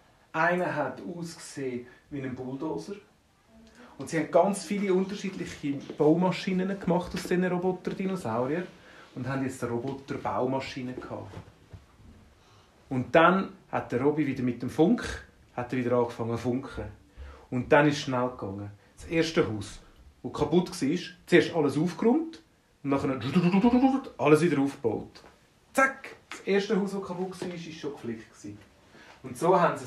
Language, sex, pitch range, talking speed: German, male, 125-170 Hz, 150 wpm